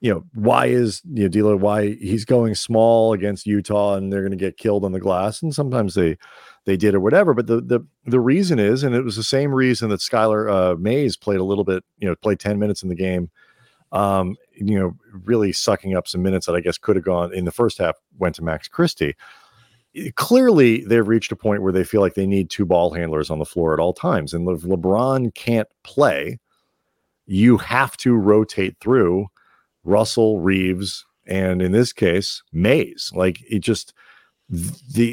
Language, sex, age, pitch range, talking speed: English, male, 40-59, 95-115 Hz, 205 wpm